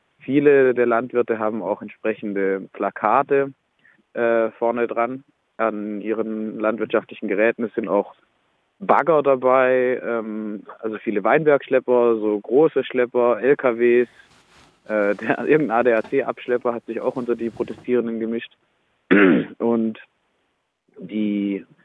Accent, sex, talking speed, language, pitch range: German, male, 110 wpm, German, 105-120 Hz